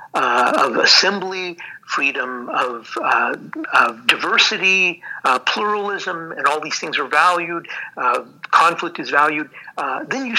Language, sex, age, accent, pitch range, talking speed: English, male, 50-69, American, 135-175 Hz, 120 wpm